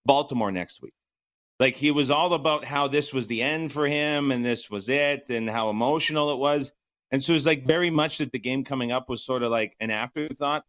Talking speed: 235 wpm